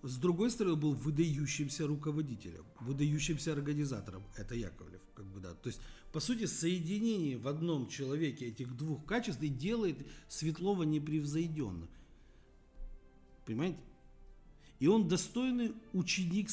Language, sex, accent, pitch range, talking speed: Russian, male, native, 115-175 Hz, 120 wpm